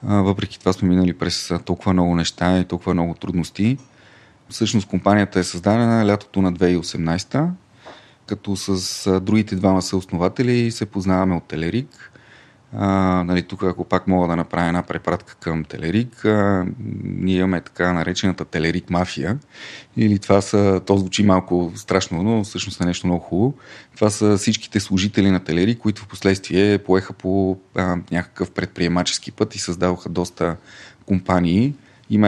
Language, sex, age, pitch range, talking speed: Bulgarian, male, 30-49, 90-105 Hz, 150 wpm